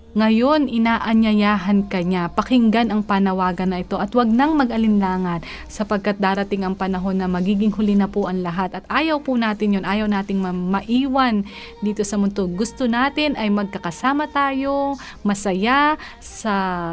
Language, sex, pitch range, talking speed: Filipino, female, 195-265 Hz, 150 wpm